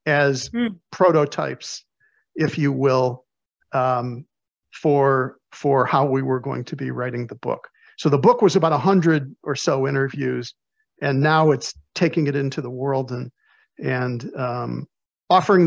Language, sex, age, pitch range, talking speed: English, male, 50-69, 135-175 Hz, 150 wpm